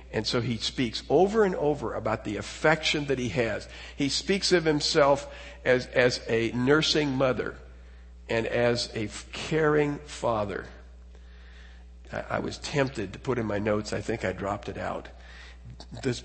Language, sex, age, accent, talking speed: English, male, 50-69, American, 160 wpm